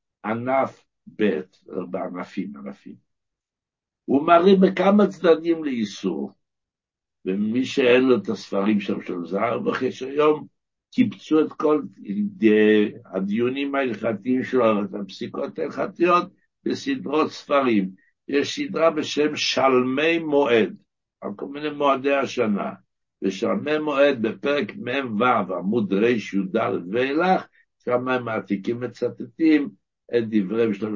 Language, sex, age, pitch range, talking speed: Hebrew, male, 60-79, 105-150 Hz, 105 wpm